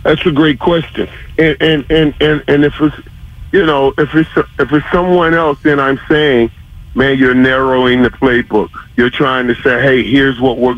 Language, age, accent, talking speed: English, 40-59, American, 195 wpm